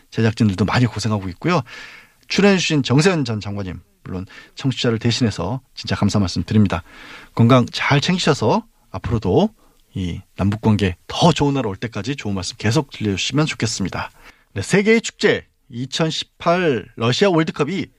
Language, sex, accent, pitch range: Korean, male, native, 110-165 Hz